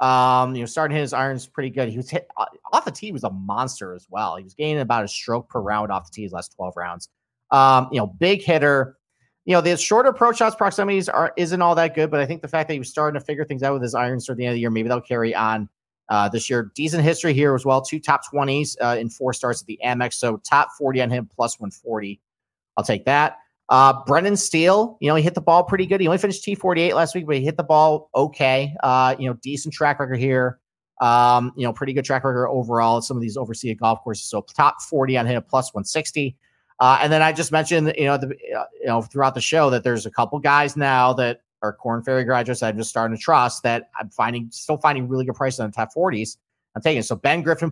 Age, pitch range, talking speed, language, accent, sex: 40-59, 120-155 Hz, 260 wpm, English, American, male